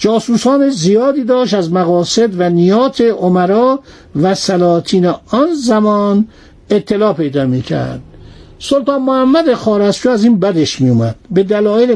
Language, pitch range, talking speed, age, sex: Persian, 175-235 Hz, 125 wpm, 60-79, male